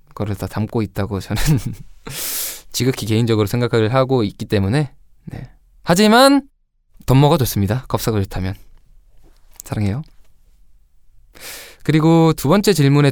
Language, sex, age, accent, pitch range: Korean, male, 20-39, native, 100-135 Hz